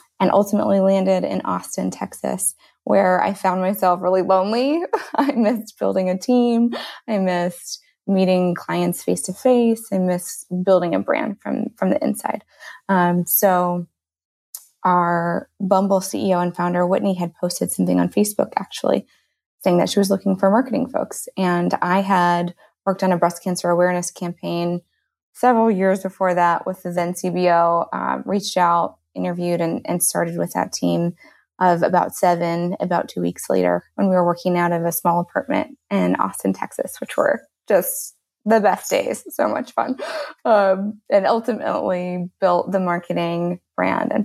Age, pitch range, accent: 20-39, 175-200 Hz, American